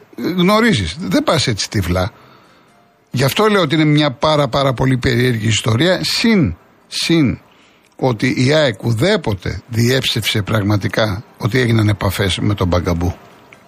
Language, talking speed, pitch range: Greek, 130 wpm, 110-145 Hz